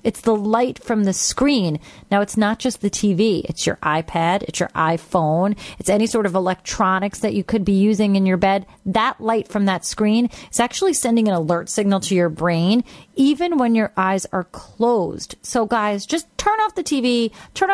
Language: English